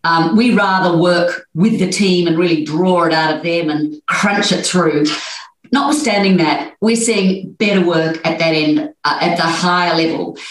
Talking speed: 185 wpm